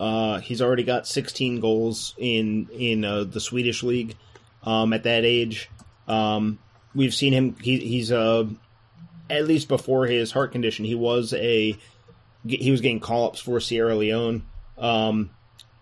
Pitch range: 110-125 Hz